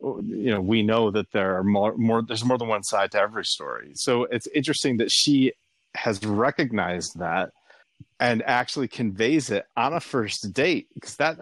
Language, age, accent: English, 30-49, American